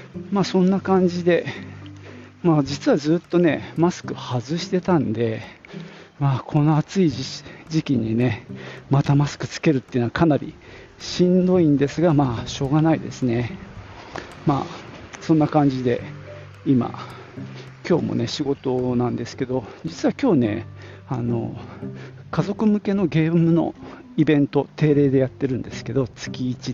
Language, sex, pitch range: Japanese, male, 115-150 Hz